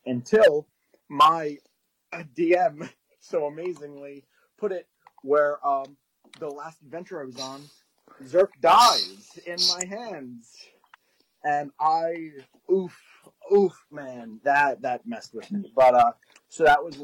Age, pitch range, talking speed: 30-49, 125-180 Hz, 125 wpm